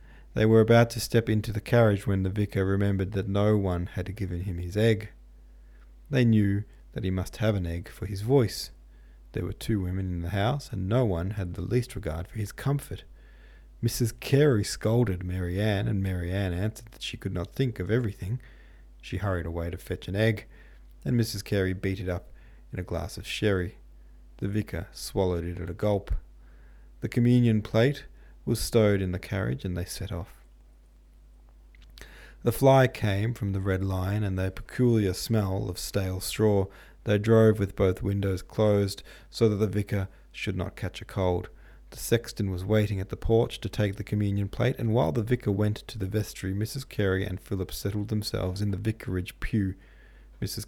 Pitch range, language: 90-110 Hz, English